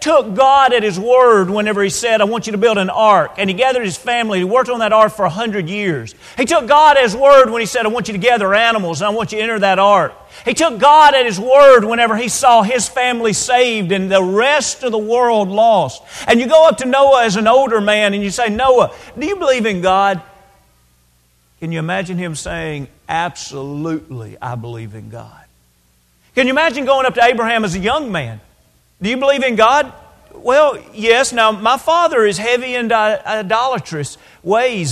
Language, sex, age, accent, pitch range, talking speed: English, male, 40-59, American, 175-250 Hz, 220 wpm